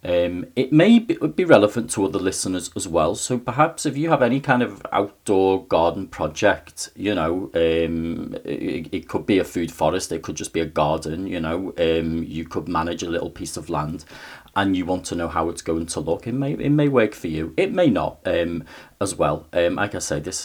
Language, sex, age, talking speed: English, male, 40-59, 230 wpm